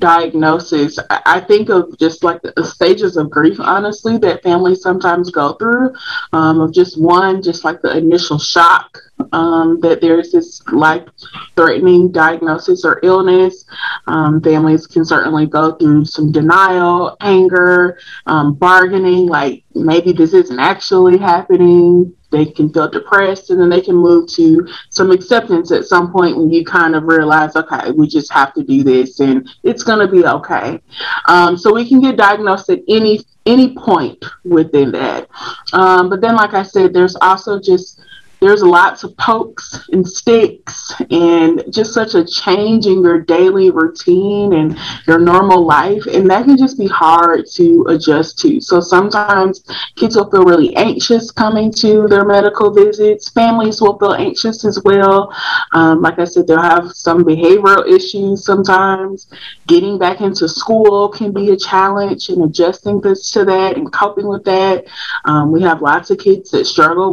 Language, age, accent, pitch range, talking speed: English, 20-39, American, 165-215 Hz, 165 wpm